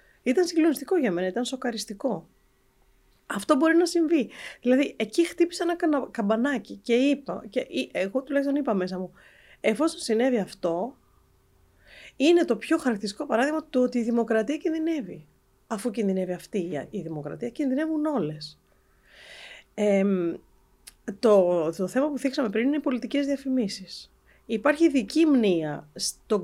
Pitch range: 190-265 Hz